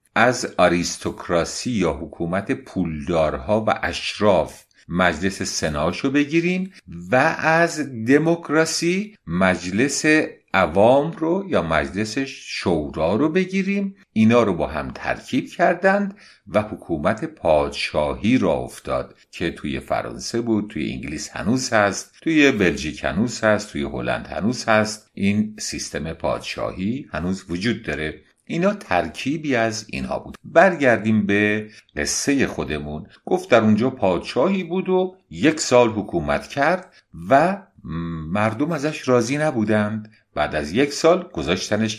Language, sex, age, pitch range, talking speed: English, male, 50-69, 90-155 Hz, 120 wpm